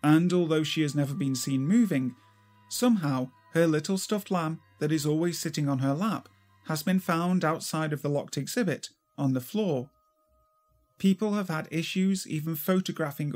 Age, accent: 40-59, British